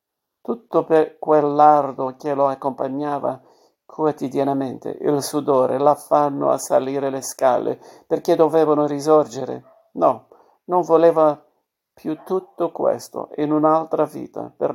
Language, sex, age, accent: Italian, male, 50-69, native